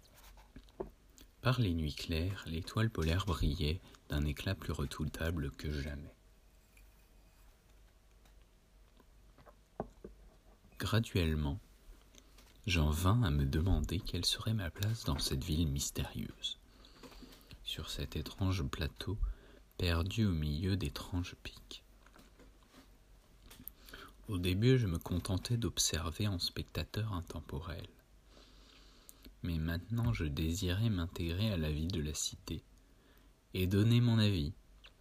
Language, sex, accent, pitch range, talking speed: French, male, French, 80-105 Hz, 105 wpm